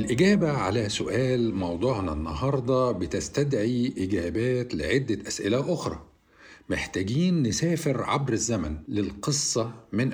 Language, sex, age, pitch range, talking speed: Arabic, male, 50-69, 100-140 Hz, 95 wpm